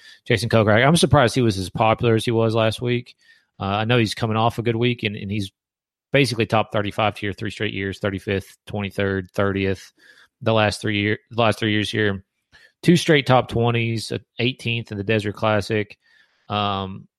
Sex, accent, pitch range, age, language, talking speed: male, American, 100-115 Hz, 30-49, English, 190 wpm